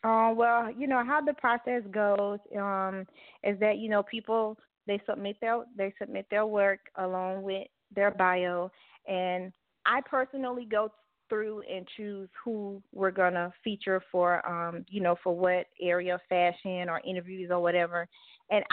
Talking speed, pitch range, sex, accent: 165 wpm, 185-215 Hz, female, American